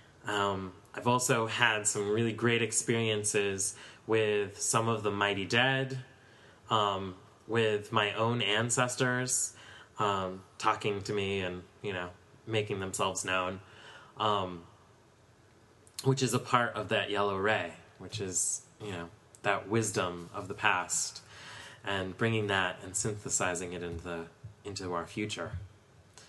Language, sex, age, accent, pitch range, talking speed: English, male, 20-39, American, 100-125 Hz, 130 wpm